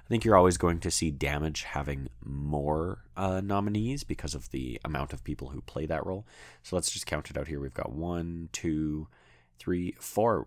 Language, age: English, 30-49